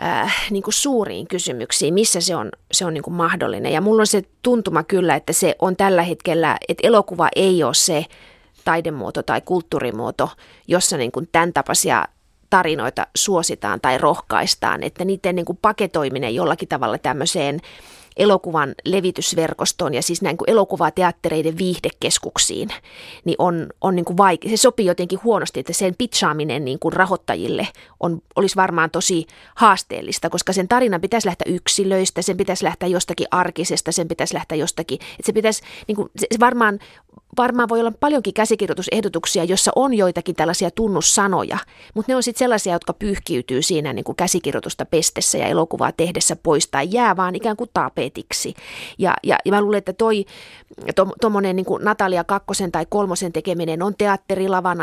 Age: 30-49